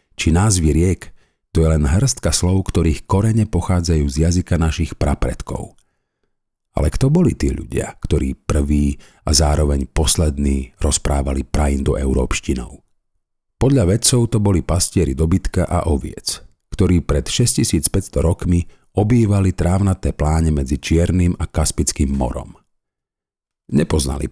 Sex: male